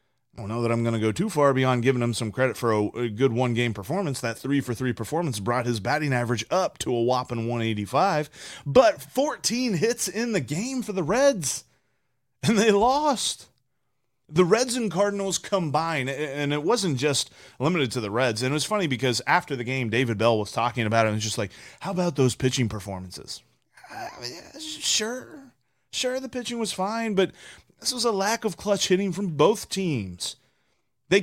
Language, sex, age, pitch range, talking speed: English, male, 30-49, 120-175 Hz, 195 wpm